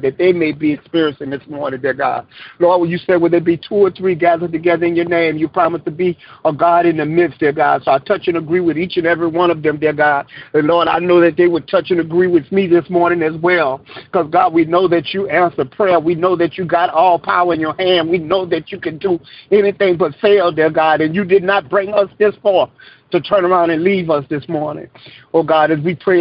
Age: 50-69